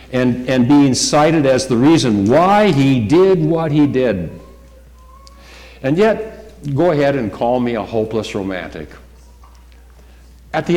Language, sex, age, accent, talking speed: English, male, 60-79, American, 140 wpm